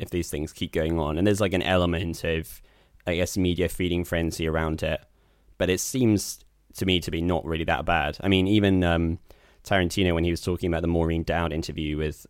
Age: 10-29